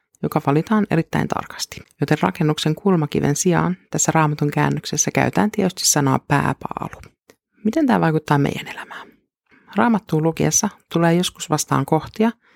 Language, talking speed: Finnish, 125 wpm